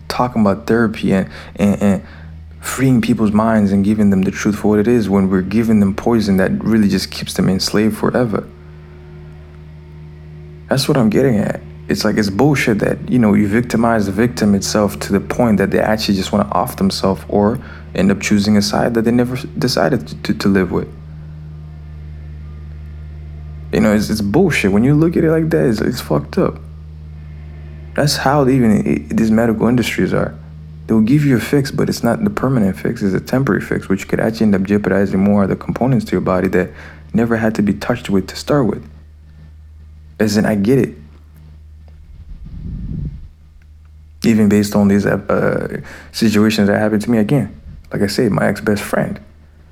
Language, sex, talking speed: English, male, 190 wpm